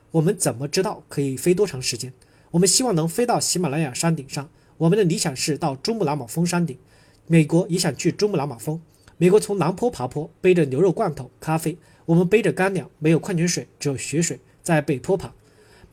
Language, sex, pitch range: Chinese, male, 140-190 Hz